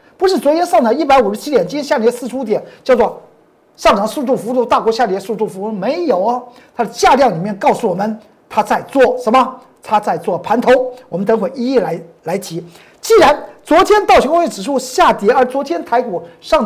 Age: 50-69